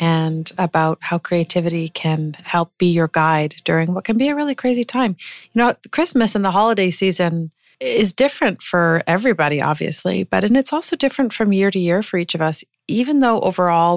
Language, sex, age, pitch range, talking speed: English, female, 30-49, 160-200 Hz, 195 wpm